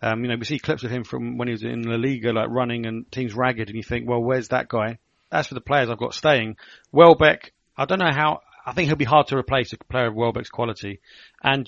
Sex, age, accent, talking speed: male, 30-49, British, 265 wpm